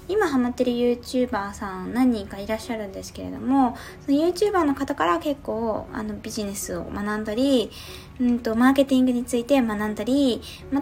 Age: 20-39